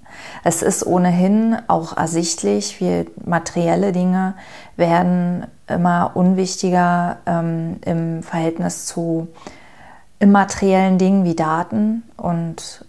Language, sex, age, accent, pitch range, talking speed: German, female, 30-49, German, 160-185 Hz, 95 wpm